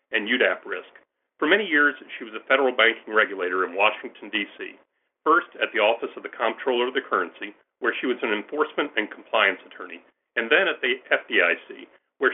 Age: 40-59